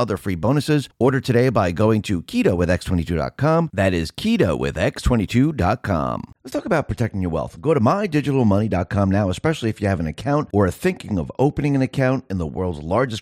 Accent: American